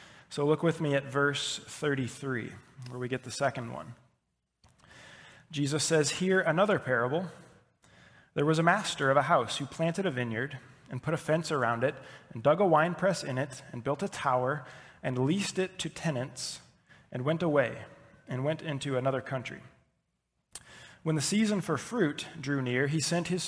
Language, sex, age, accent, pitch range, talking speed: English, male, 20-39, American, 125-160 Hz, 175 wpm